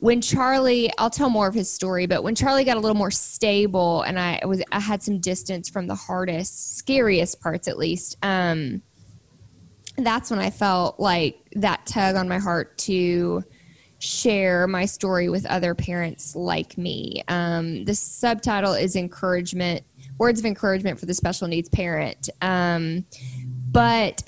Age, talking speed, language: 20-39, 160 wpm, English